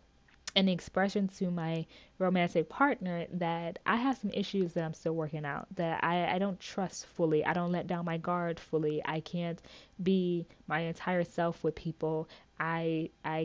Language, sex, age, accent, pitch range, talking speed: English, female, 20-39, American, 165-205 Hz, 175 wpm